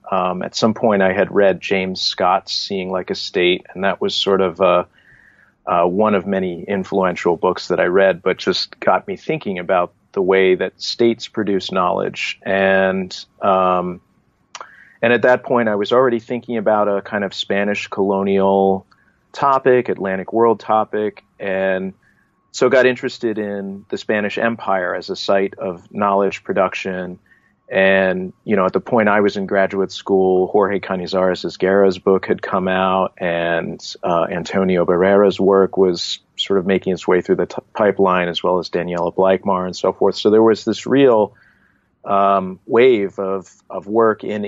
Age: 40-59